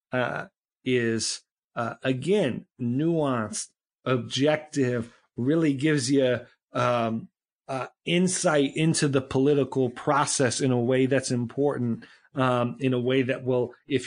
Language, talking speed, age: English, 120 wpm, 40-59